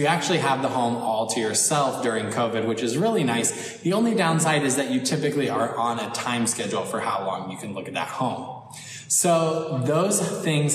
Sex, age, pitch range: male, 20-39, 115-155 Hz